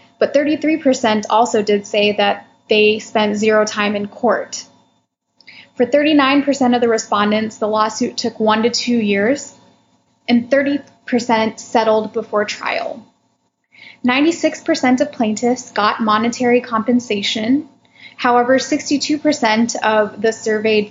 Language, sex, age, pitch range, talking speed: English, female, 10-29, 215-255 Hz, 115 wpm